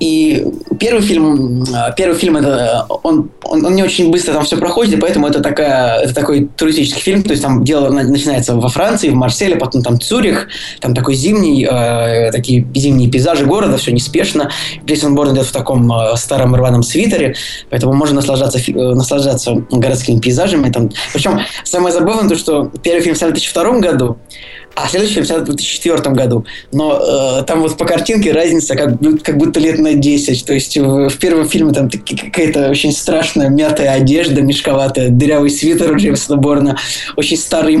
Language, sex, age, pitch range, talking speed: Russian, male, 20-39, 130-165 Hz, 165 wpm